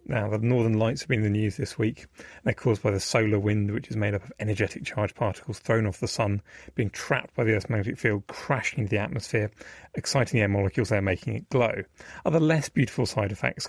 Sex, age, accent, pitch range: male, 30-49, British, 105-125 Hz